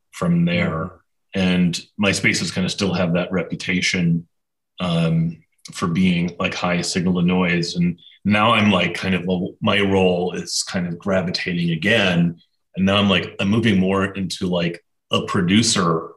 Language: English